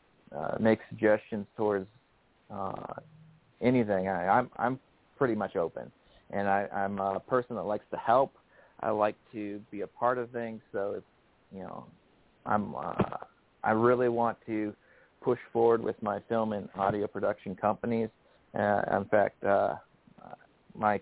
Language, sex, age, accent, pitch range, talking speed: English, male, 40-59, American, 100-115 Hz, 150 wpm